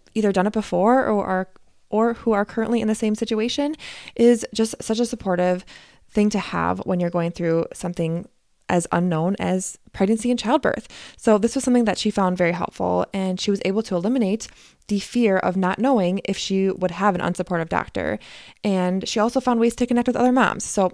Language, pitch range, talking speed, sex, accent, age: English, 185-235 Hz, 205 wpm, female, American, 20-39